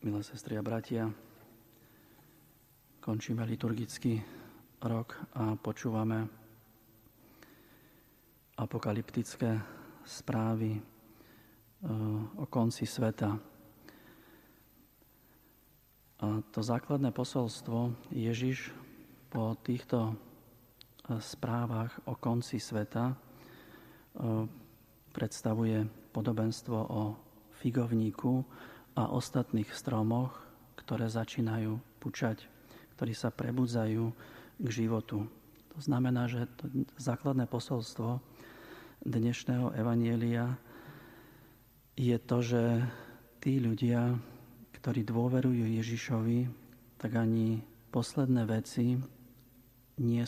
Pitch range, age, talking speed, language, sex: 110-125 Hz, 40-59, 75 wpm, Slovak, male